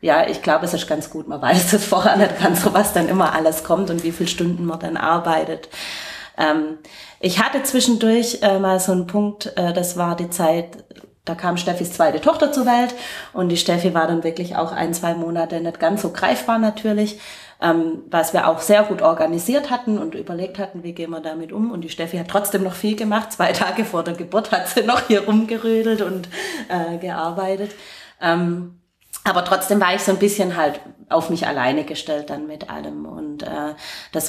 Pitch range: 165-200 Hz